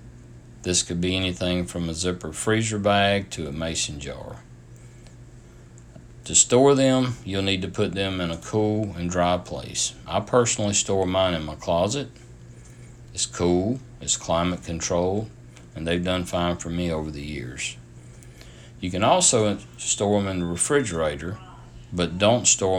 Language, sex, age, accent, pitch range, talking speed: English, male, 60-79, American, 85-120 Hz, 155 wpm